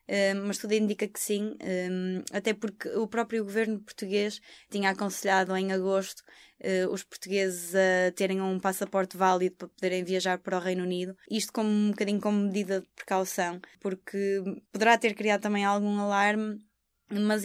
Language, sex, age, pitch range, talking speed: Portuguese, female, 20-39, 185-205 Hz, 155 wpm